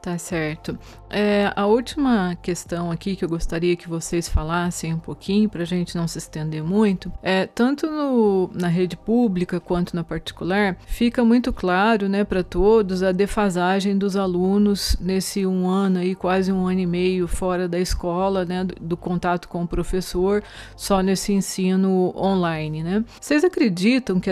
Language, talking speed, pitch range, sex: Portuguese, 170 wpm, 180-205 Hz, female